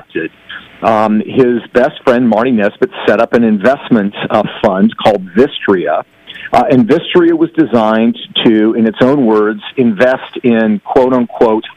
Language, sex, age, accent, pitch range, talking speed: English, male, 50-69, American, 110-135 Hz, 140 wpm